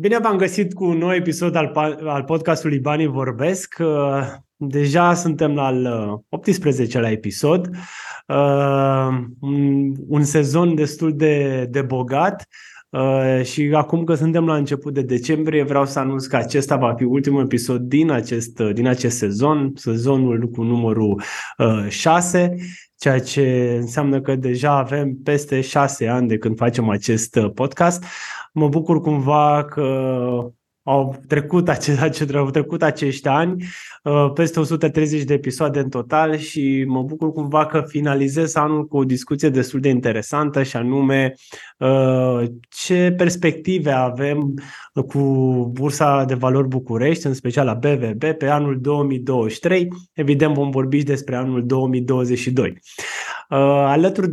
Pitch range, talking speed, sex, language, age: 130-155 Hz, 130 wpm, male, Romanian, 20-39